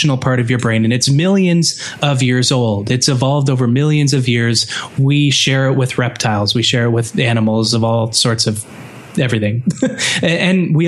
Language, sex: English, male